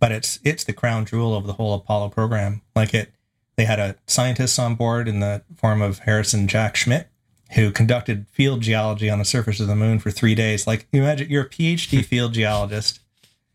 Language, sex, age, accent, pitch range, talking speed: English, male, 30-49, American, 105-120 Hz, 205 wpm